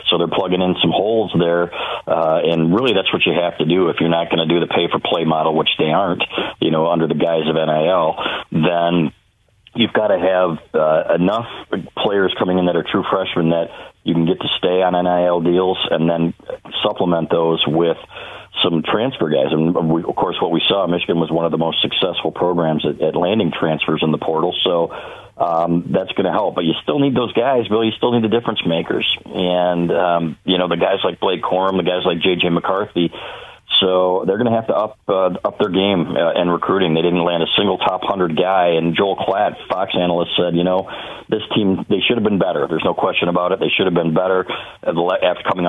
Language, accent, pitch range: English, American, 85-95 Hz